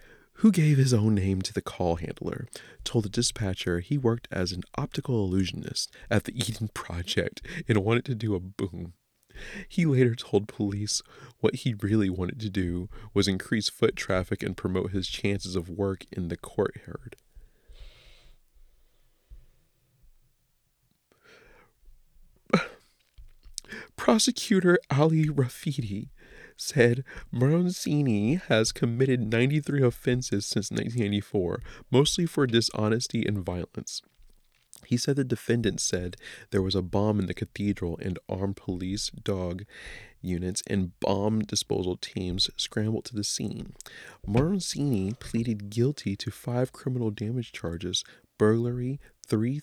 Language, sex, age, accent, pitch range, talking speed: English, male, 30-49, American, 95-125 Hz, 125 wpm